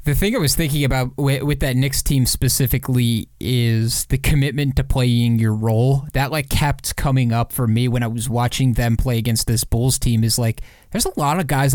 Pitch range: 120-140 Hz